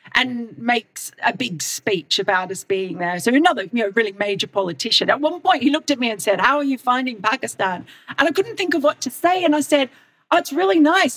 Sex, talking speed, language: female, 240 wpm, English